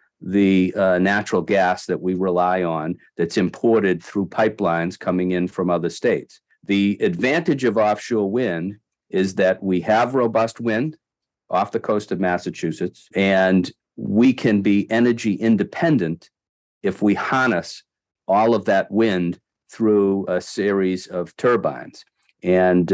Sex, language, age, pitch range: male, English, 50-69, 90-110 Hz